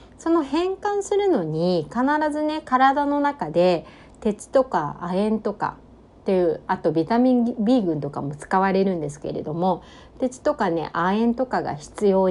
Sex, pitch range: female, 175-255 Hz